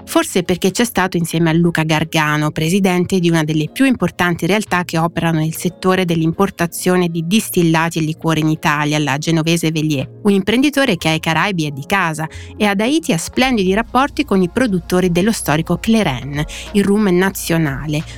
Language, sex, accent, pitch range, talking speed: Italian, female, native, 160-200 Hz, 170 wpm